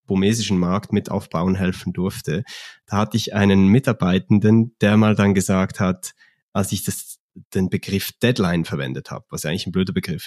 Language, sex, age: German, male, 30-49